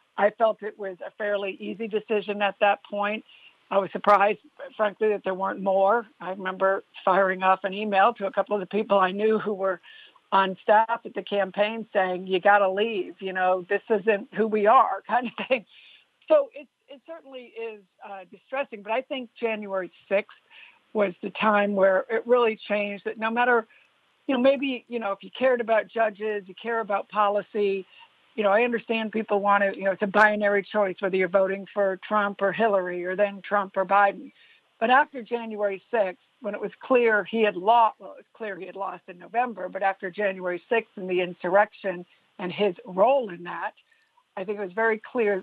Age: 60-79